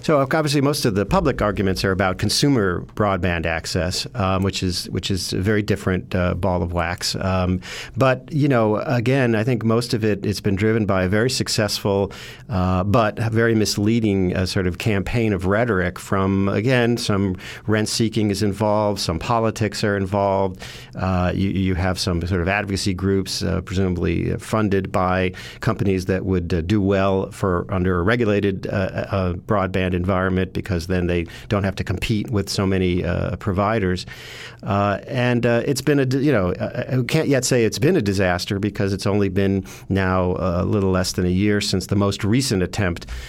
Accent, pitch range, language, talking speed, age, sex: American, 90-110 Hz, English, 185 wpm, 50-69, male